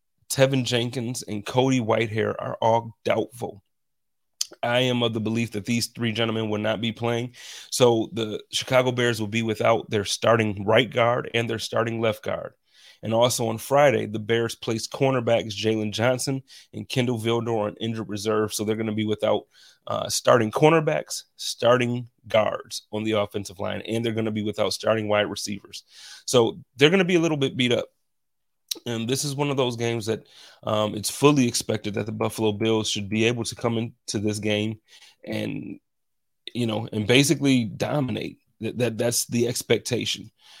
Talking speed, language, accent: 180 wpm, English, American